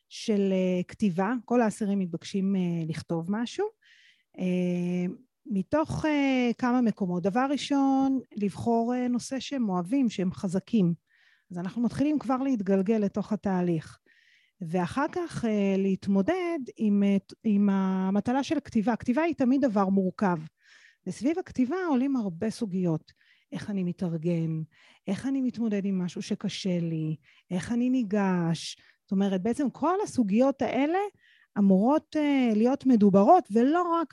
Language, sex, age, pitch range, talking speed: Hebrew, female, 30-49, 185-250 Hz, 120 wpm